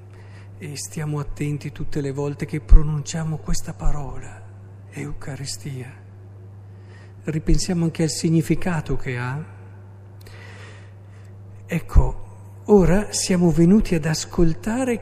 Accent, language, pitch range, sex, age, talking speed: native, Italian, 100-160 Hz, male, 50-69, 90 wpm